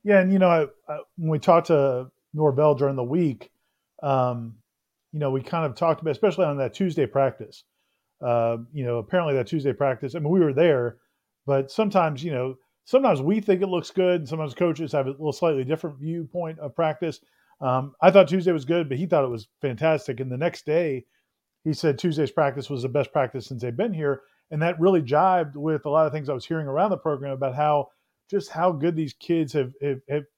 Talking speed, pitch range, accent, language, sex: 220 wpm, 140-175 Hz, American, English, male